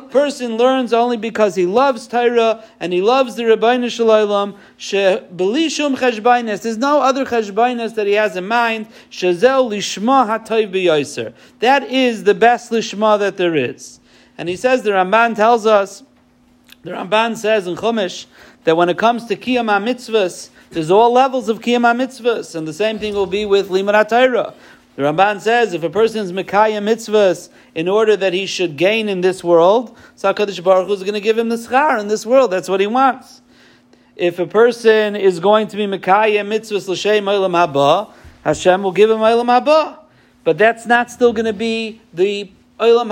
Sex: male